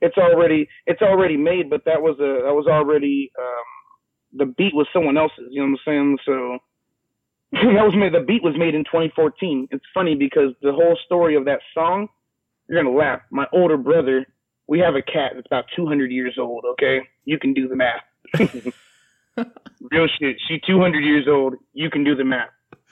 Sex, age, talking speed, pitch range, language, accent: male, 30-49, 195 wpm, 140-170 Hz, English, American